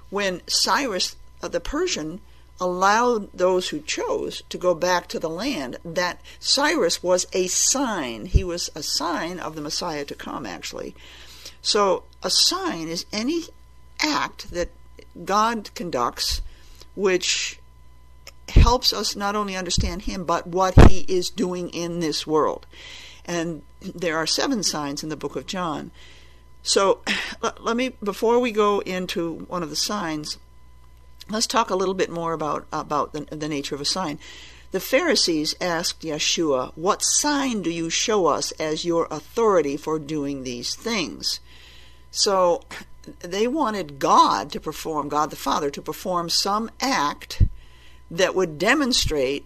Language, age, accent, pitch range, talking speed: English, 50-69, American, 145-200 Hz, 145 wpm